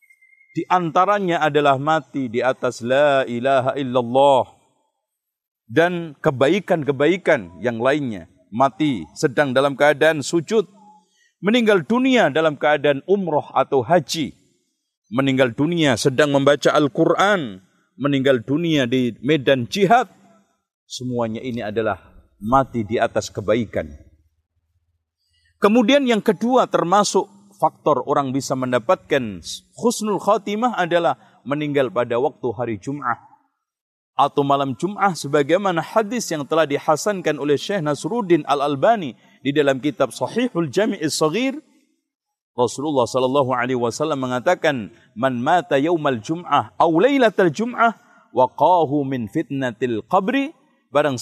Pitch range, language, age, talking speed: 130-190 Hz, Indonesian, 50-69, 110 wpm